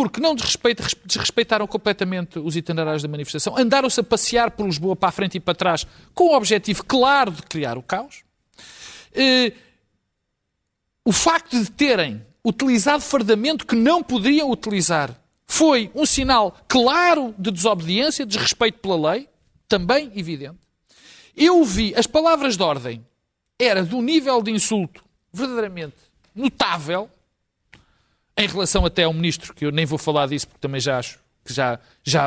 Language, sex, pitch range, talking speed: Portuguese, male, 155-260 Hz, 150 wpm